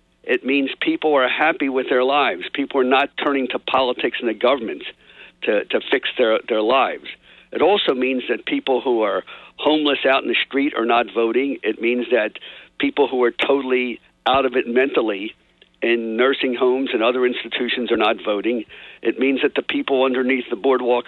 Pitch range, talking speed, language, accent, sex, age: 125-165 Hz, 190 wpm, English, American, male, 50-69